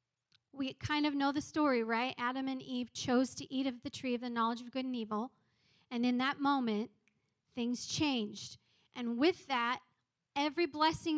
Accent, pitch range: American, 240-280 Hz